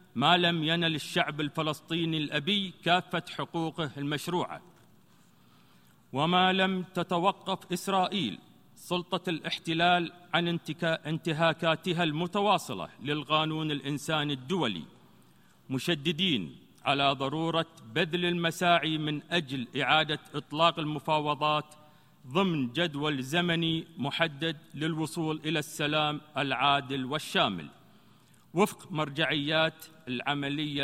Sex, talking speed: male, 85 wpm